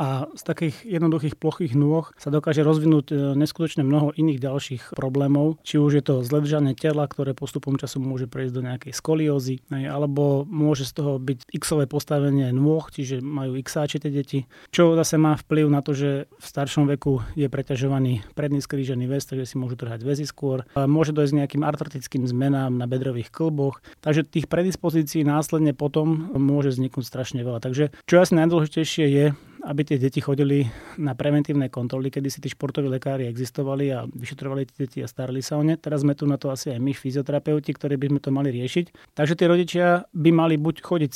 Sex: male